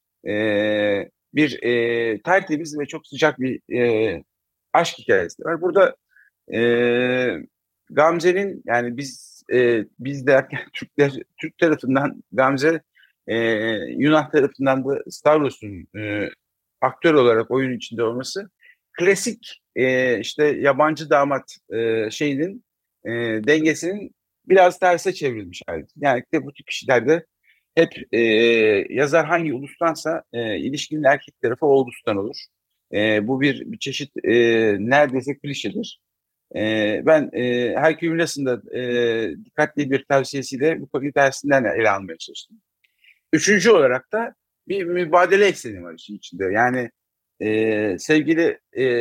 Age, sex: 50-69, male